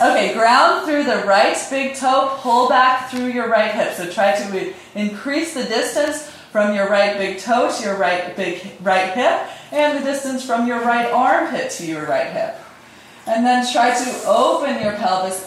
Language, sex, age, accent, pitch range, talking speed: English, female, 20-39, American, 175-245 Hz, 180 wpm